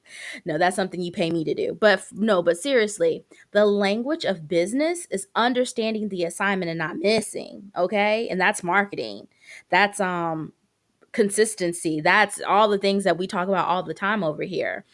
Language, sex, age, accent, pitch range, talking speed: English, female, 20-39, American, 180-245 Hz, 175 wpm